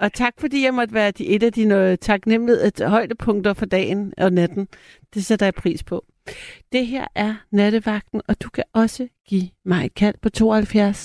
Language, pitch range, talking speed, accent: Danish, 185-225 Hz, 190 wpm, native